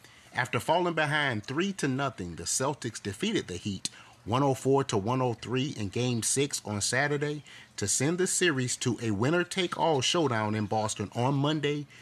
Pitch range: 105-140 Hz